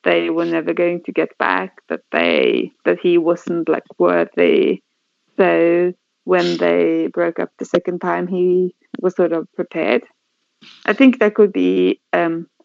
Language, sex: English, female